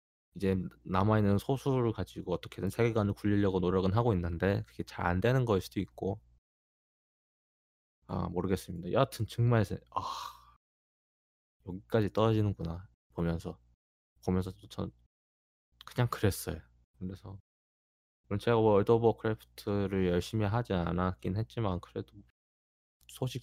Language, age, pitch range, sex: Korean, 20-39, 90-115 Hz, male